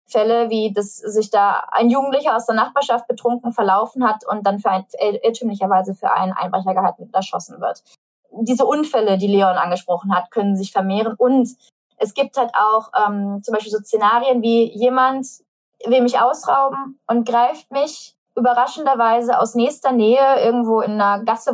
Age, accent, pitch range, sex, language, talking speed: 20-39, German, 210-250 Hz, female, German, 160 wpm